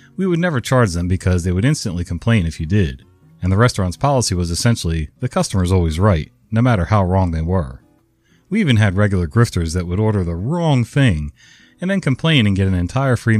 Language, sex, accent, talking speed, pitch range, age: English, male, American, 215 wpm, 90-120 Hz, 40-59